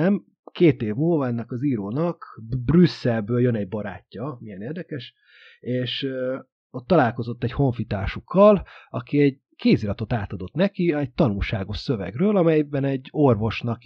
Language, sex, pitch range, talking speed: Hungarian, male, 110-145 Hz, 125 wpm